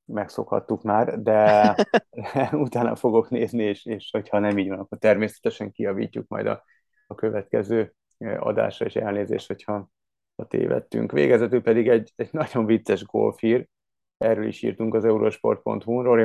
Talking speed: 135 wpm